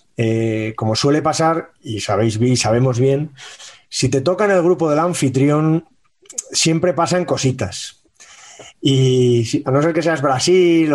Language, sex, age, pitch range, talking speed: Spanish, male, 30-49, 115-155 Hz, 155 wpm